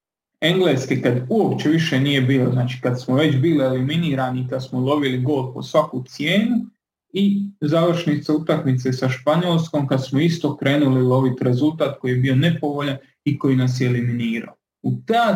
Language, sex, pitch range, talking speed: Croatian, male, 135-185 Hz, 160 wpm